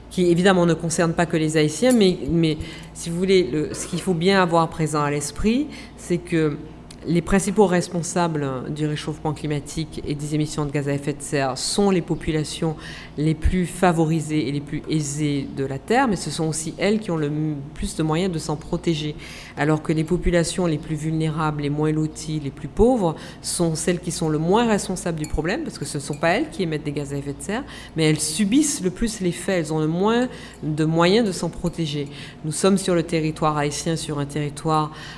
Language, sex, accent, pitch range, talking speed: French, female, French, 150-175 Hz, 215 wpm